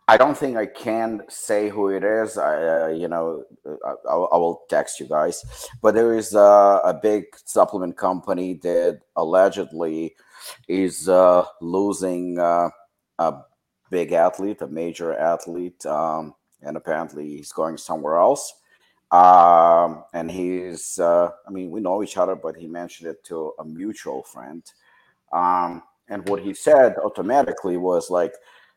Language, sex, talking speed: English, male, 150 wpm